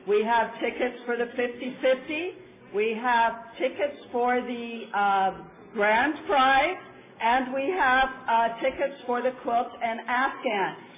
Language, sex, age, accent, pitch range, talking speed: English, female, 50-69, American, 220-260 Hz, 130 wpm